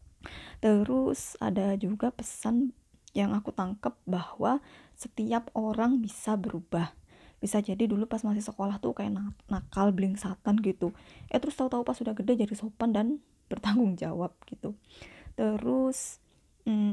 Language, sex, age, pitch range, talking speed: Indonesian, female, 20-39, 195-230 Hz, 135 wpm